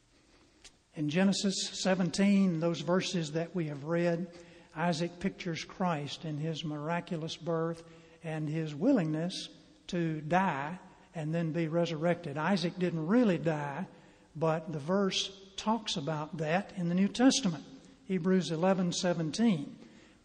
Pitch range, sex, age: 160-185 Hz, male, 60-79